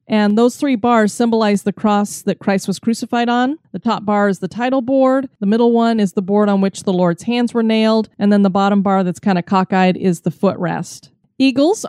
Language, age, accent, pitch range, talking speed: English, 30-49, American, 190-240 Hz, 225 wpm